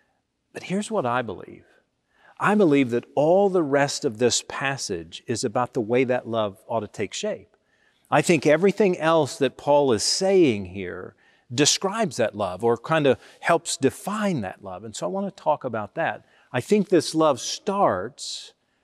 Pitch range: 125-180 Hz